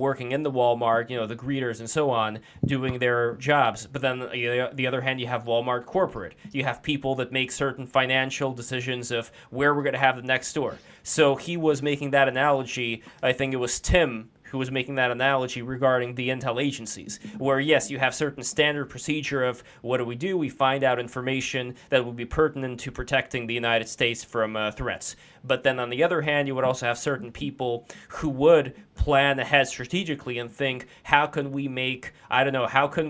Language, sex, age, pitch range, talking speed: English, male, 20-39, 120-140 Hz, 210 wpm